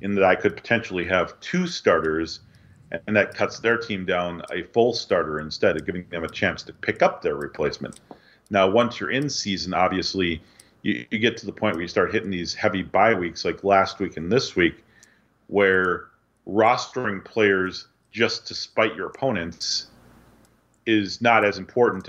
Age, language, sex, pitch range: 40-59, English, male, 90-105 Hz